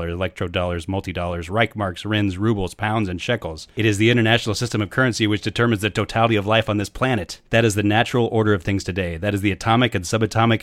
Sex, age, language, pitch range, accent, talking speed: male, 30-49, English, 95-110 Hz, American, 215 wpm